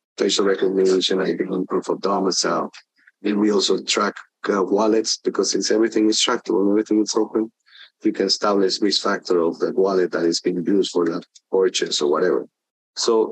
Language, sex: English, male